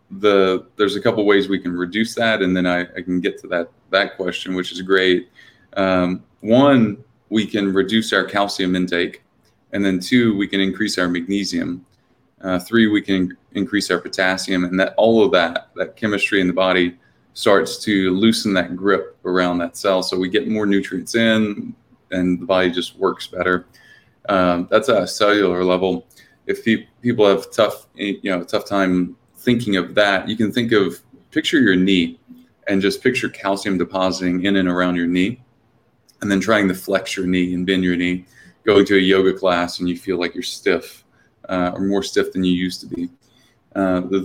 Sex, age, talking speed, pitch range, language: male, 20-39, 195 wpm, 90-100 Hz, English